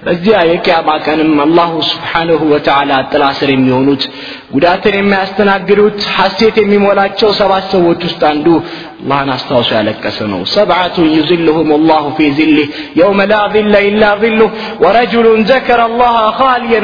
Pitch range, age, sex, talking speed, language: 140-205 Hz, 30-49, male, 125 wpm, Amharic